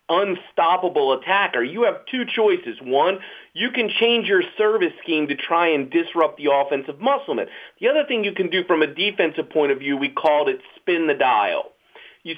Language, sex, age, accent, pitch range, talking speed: English, male, 40-59, American, 160-255 Hz, 190 wpm